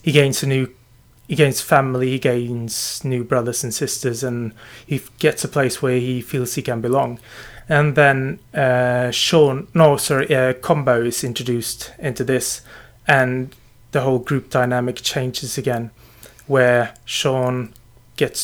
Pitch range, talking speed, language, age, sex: 120-135 Hz, 155 wpm, English, 20-39, male